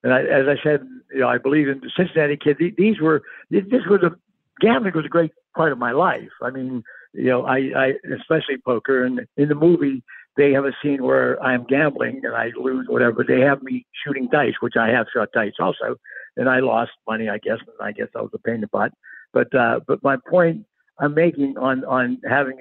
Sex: male